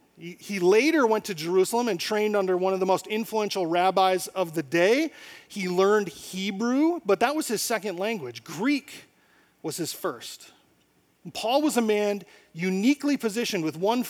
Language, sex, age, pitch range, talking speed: English, male, 40-59, 190-250 Hz, 160 wpm